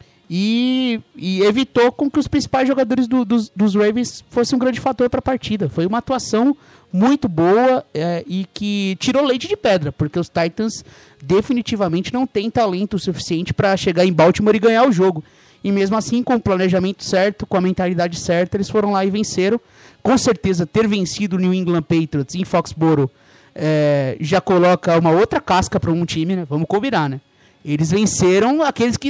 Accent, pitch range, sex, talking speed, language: Brazilian, 160-220 Hz, male, 185 wpm, English